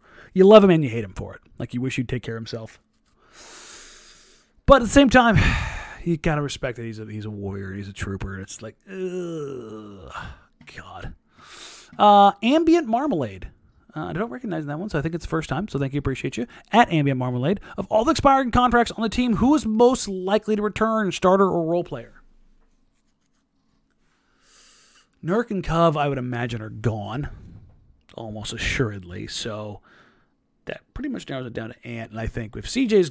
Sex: male